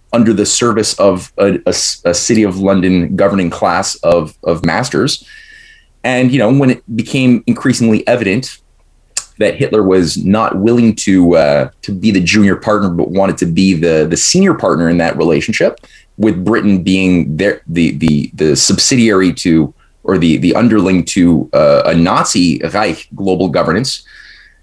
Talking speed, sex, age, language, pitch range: 160 wpm, male, 30-49, English, 90-110 Hz